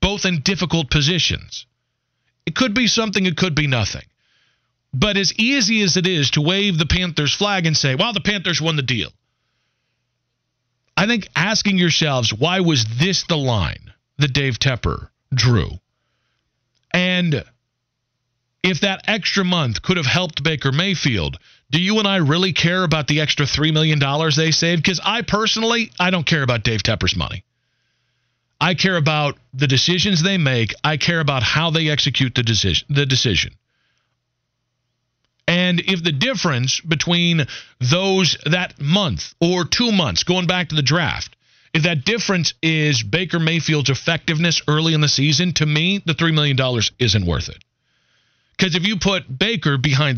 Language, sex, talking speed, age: English, male, 160 wpm, 40-59